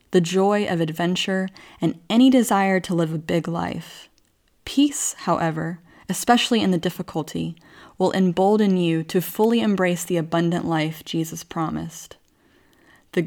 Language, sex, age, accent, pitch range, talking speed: English, female, 20-39, American, 165-210 Hz, 135 wpm